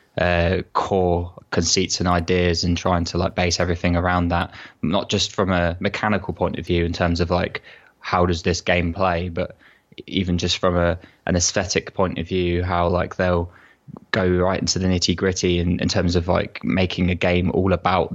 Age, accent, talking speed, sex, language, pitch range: 20-39, British, 190 wpm, male, English, 85-95 Hz